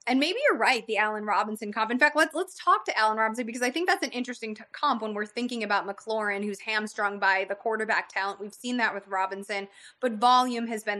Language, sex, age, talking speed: English, female, 20-39, 240 wpm